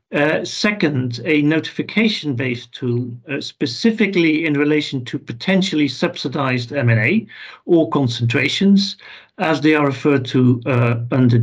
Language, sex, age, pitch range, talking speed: English, male, 50-69, 130-170 Hz, 120 wpm